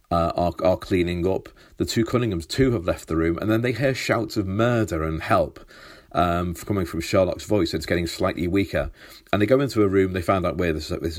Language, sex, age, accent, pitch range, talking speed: English, male, 40-59, British, 85-100 Hz, 230 wpm